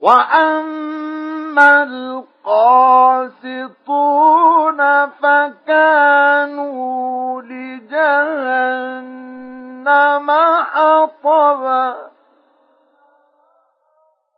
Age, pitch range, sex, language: 40-59, 275-320 Hz, male, Arabic